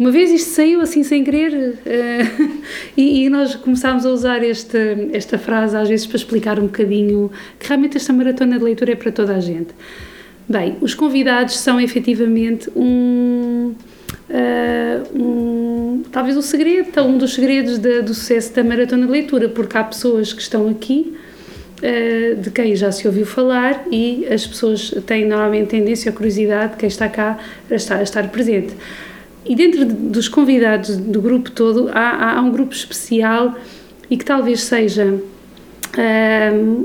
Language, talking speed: Portuguese, 155 wpm